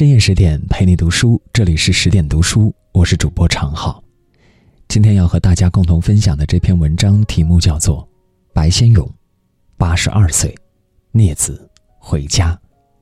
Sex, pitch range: male, 85-110 Hz